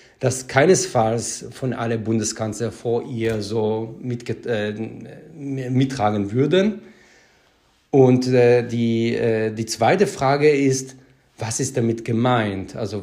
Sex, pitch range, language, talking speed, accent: male, 115-135 Hz, German, 115 wpm, German